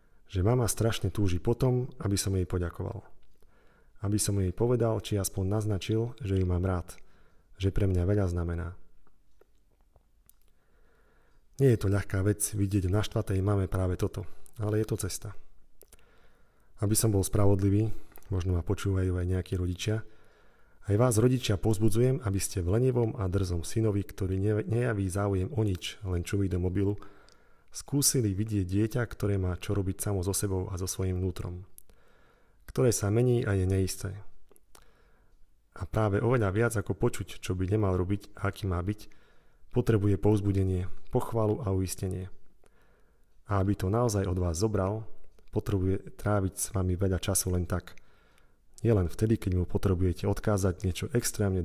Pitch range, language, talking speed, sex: 95-110 Hz, Slovak, 155 wpm, male